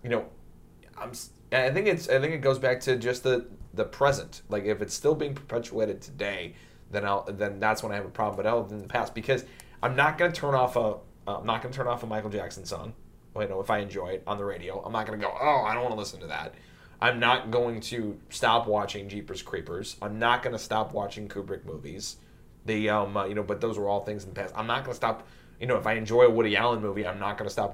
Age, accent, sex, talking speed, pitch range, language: 30-49, American, male, 275 wpm, 100-120 Hz, English